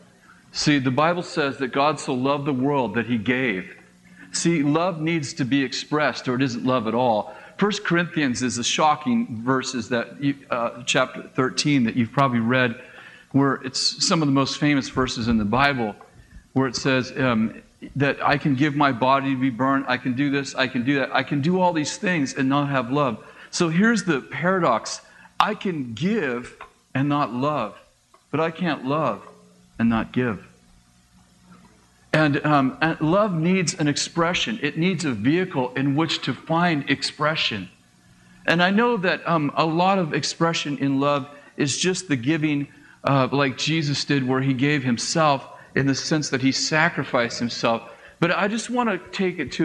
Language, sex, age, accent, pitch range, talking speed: English, male, 40-59, American, 130-165 Hz, 180 wpm